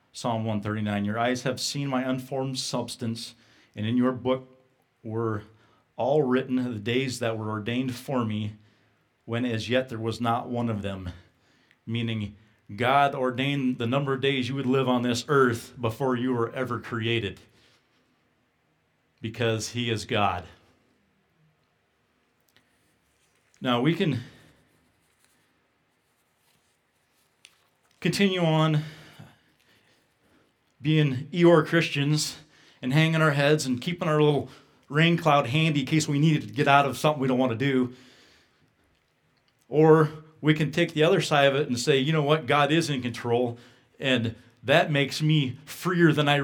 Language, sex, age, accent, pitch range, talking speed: English, male, 40-59, American, 115-145 Hz, 145 wpm